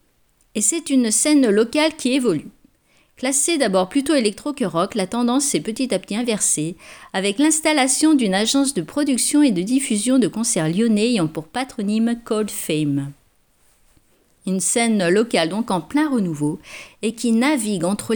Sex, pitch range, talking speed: female, 185-255 Hz, 160 wpm